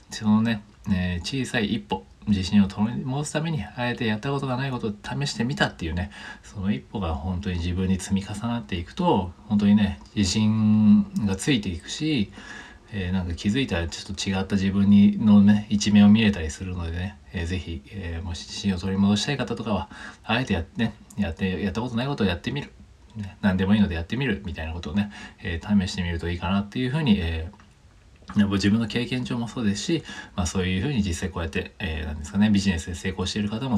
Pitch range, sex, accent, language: 90-105 Hz, male, native, Japanese